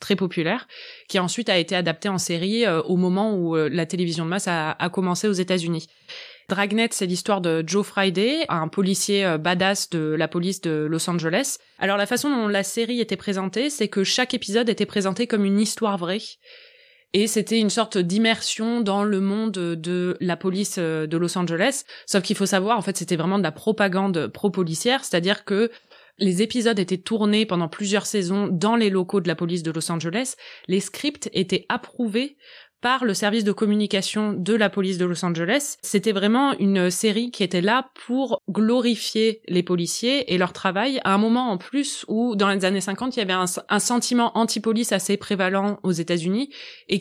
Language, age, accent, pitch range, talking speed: French, 20-39, French, 185-230 Hz, 195 wpm